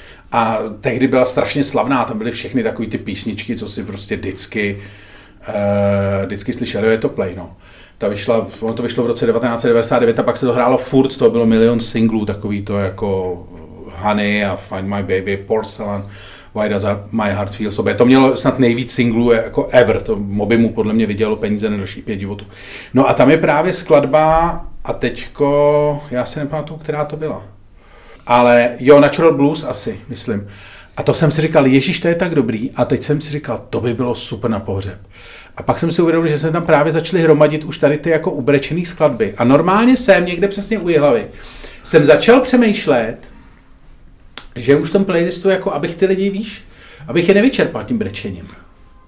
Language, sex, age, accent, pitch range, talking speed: Czech, male, 40-59, native, 105-155 Hz, 190 wpm